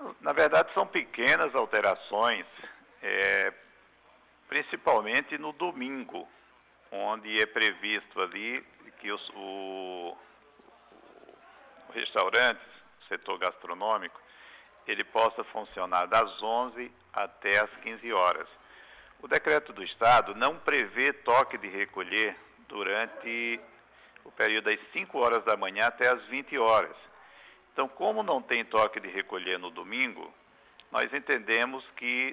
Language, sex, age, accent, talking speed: Portuguese, male, 50-69, Brazilian, 115 wpm